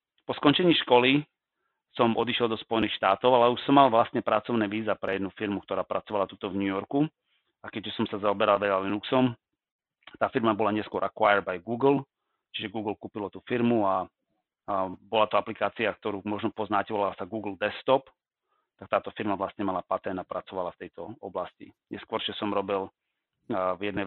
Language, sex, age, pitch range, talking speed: Slovak, male, 30-49, 100-115 Hz, 180 wpm